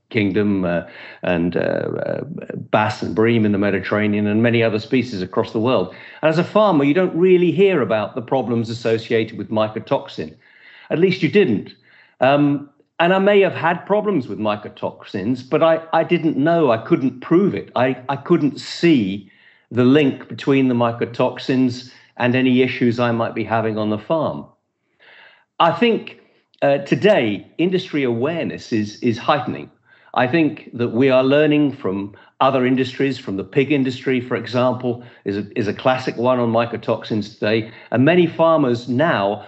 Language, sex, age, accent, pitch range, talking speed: English, male, 50-69, British, 115-155 Hz, 165 wpm